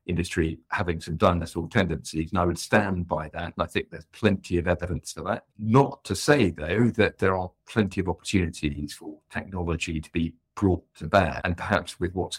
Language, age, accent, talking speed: English, 50-69, British, 200 wpm